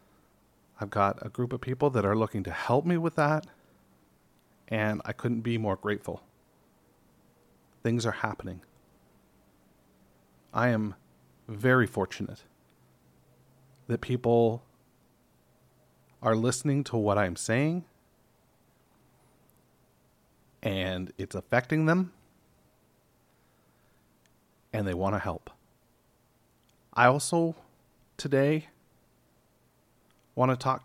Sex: male